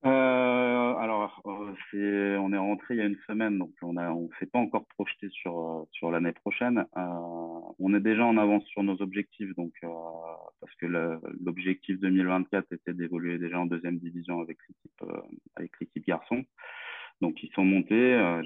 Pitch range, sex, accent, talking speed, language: 85-105 Hz, male, French, 180 wpm, French